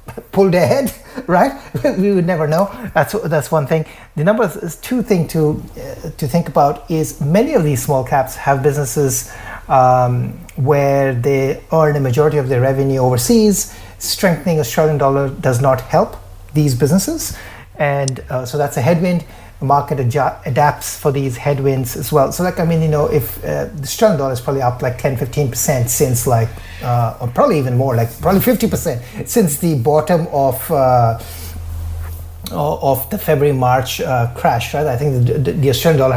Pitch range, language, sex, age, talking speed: 125-155 Hz, English, male, 30-49, 185 wpm